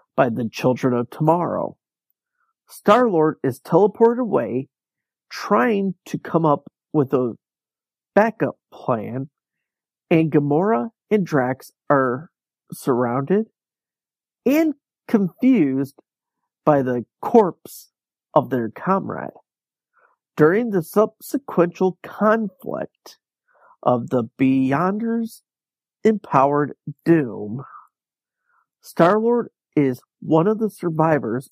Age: 50-69